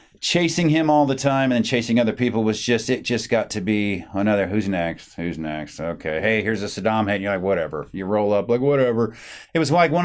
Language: English